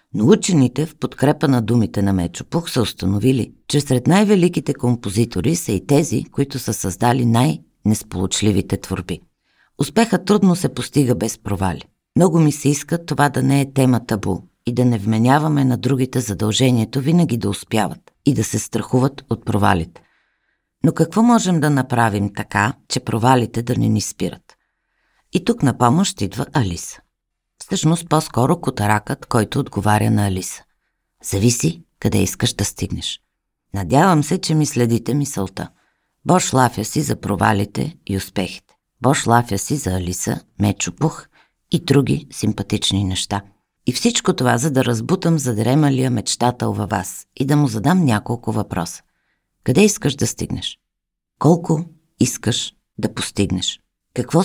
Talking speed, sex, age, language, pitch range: 145 wpm, female, 50-69, Bulgarian, 105-145 Hz